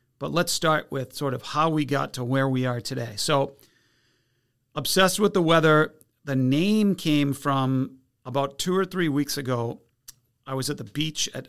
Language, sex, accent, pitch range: English, male, American, 125-145 Hz